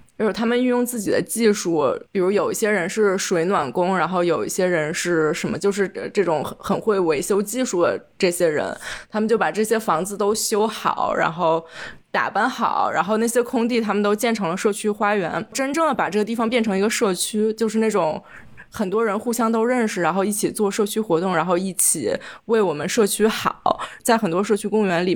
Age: 20-39